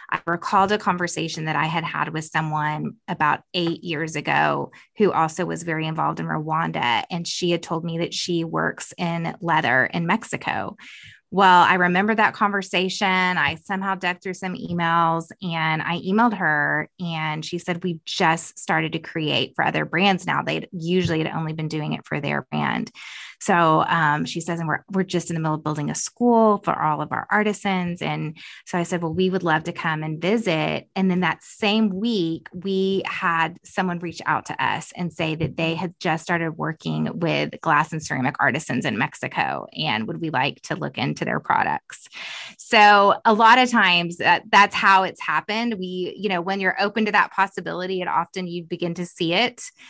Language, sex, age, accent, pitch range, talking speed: English, female, 20-39, American, 160-195 Hz, 195 wpm